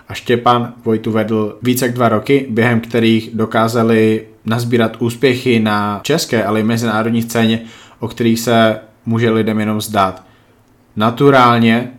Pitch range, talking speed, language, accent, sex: 110-120 Hz, 135 wpm, Czech, native, male